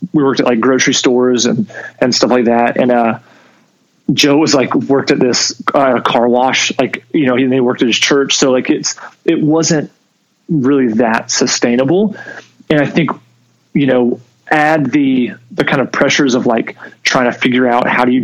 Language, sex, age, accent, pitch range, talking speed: English, male, 30-49, American, 120-150 Hz, 195 wpm